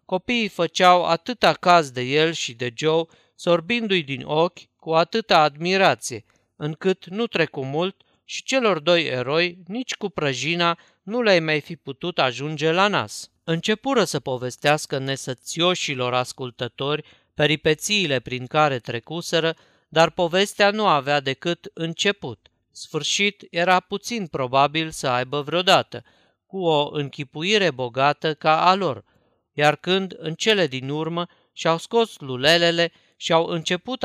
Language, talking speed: Romanian, 130 wpm